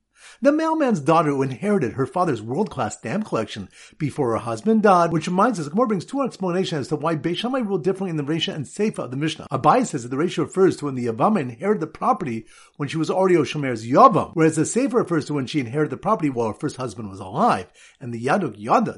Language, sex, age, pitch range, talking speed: English, male, 50-69, 145-210 Hz, 240 wpm